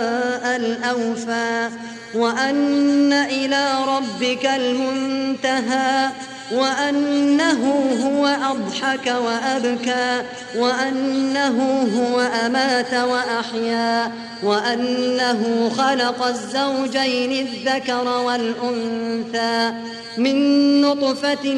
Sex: female